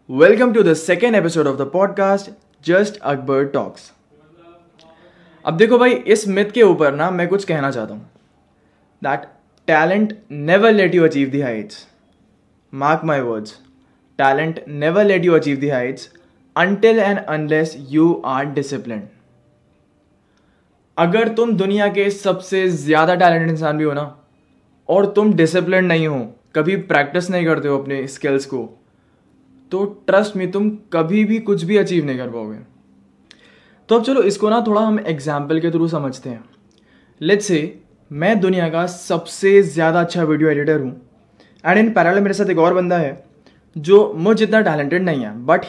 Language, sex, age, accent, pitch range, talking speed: Hindi, male, 20-39, native, 140-200 Hz, 135 wpm